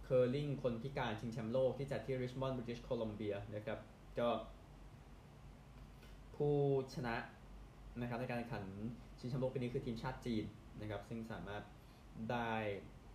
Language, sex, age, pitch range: Thai, male, 20-39, 110-125 Hz